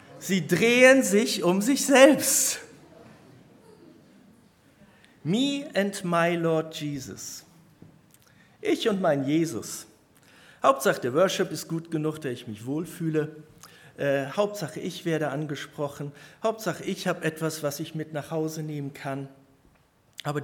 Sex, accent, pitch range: male, German, 135-175 Hz